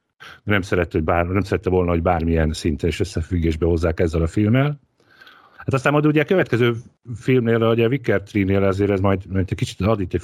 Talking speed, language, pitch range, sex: 200 wpm, Hungarian, 90-115 Hz, male